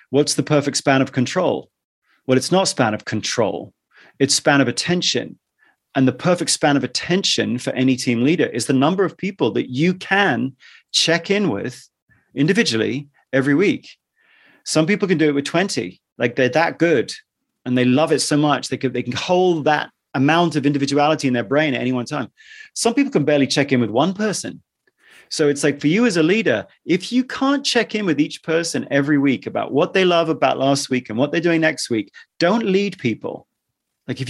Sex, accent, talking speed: male, British, 205 wpm